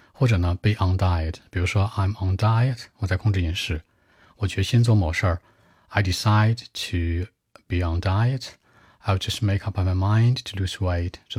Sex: male